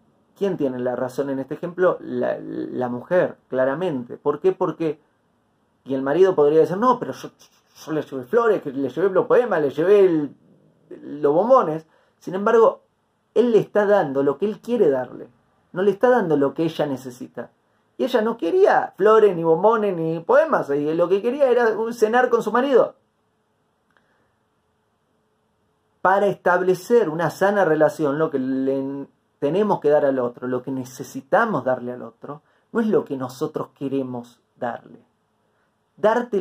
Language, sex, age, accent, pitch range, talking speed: Spanish, male, 30-49, Argentinian, 140-215 Hz, 160 wpm